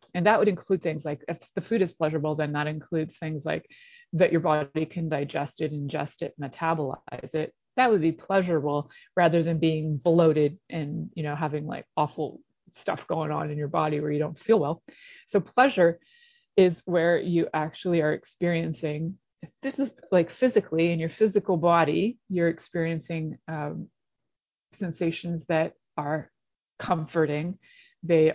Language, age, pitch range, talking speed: English, 20-39, 155-190 Hz, 160 wpm